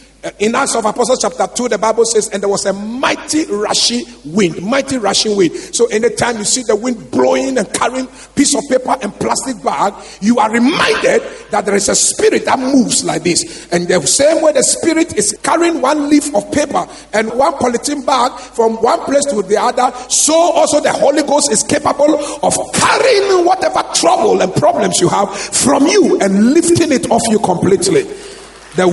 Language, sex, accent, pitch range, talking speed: English, male, Nigerian, 215-305 Hz, 190 wpm